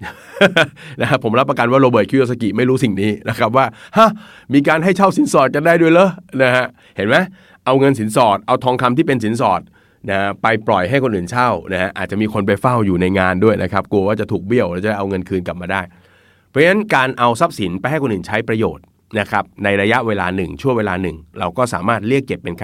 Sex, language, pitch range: male, Thai, 95-125 Hz